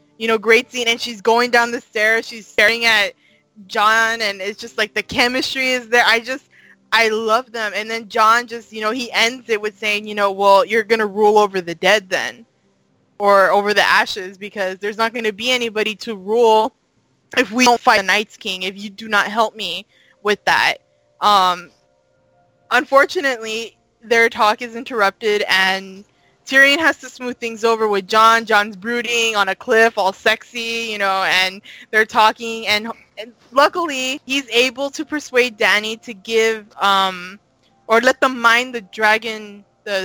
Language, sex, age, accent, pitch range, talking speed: English, female, 20-39, American, 205-240 Hz, 185 wpm